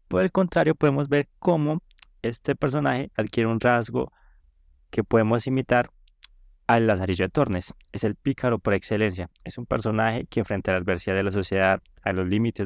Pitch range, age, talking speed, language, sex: 100-130 Hz, 20-39, 175 wpm, Spanish, male